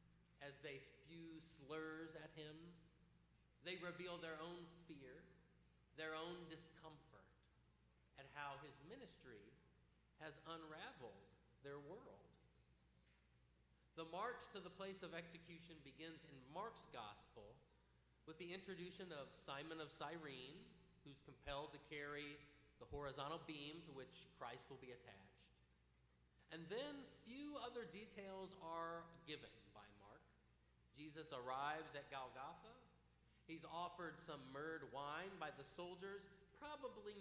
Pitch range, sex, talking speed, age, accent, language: 130-180 Hz, male, 120 wpm, 40-59, American, English